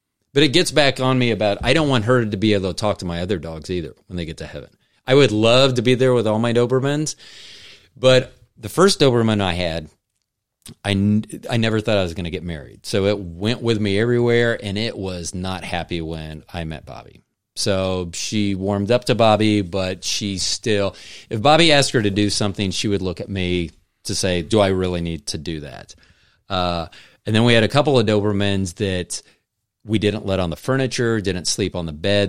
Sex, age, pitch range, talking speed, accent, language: male, 40-59, 90-115 Hz, 220 wpm, American, English